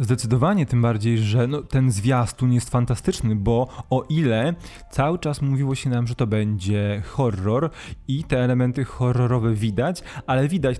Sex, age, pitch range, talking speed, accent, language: male, 20-39, 115-140 Hz, 150 wpm, native, Polish